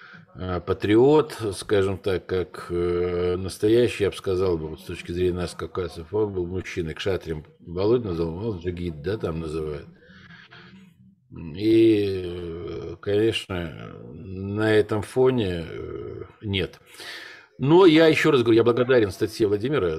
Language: Russian